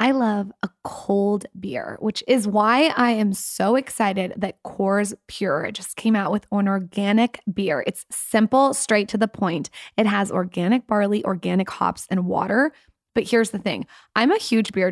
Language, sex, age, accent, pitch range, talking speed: English, female, 20-39, American, 200-235 Hz, 175 wpm